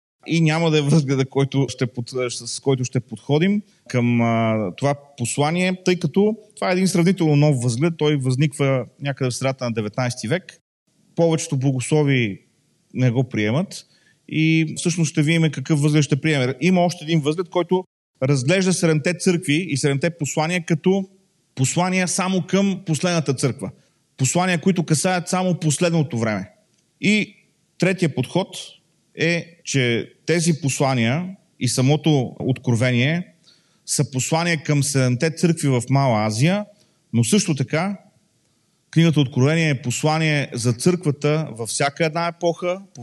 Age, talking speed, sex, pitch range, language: 30-49, 135 wpm, male, 125-170 Hz, Bulgarian